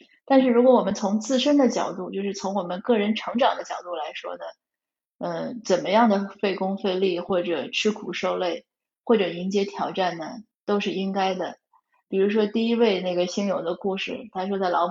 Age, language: 20-39, Chinese